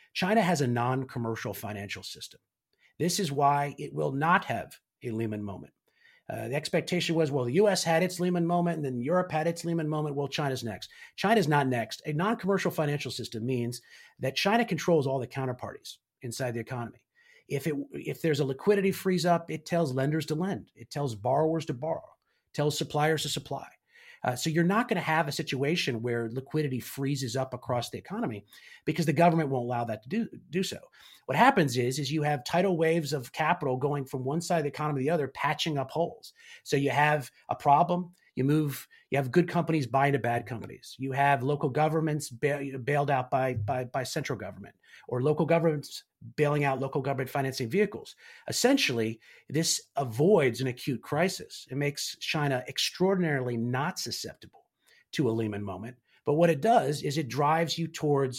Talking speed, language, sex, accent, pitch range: 190 wpm, English, male, American, 130-165 Hz